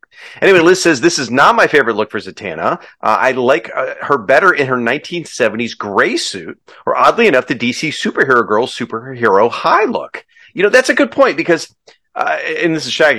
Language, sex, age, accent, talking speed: English, male, 40-59, American, 200 wpm